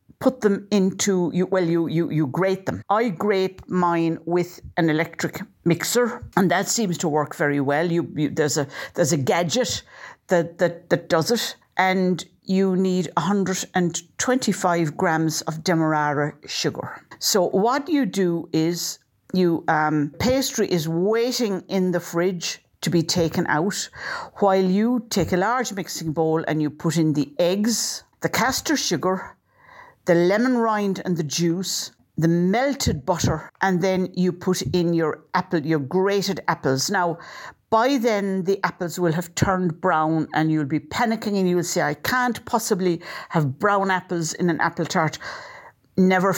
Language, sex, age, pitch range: English, female, 60-79, 165-200 Hz